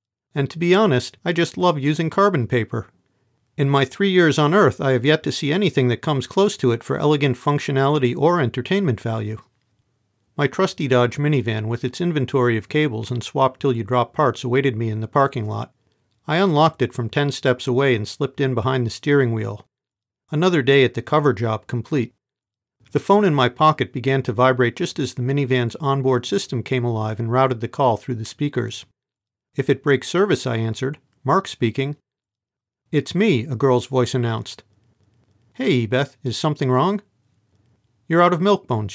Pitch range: 115-150 Hz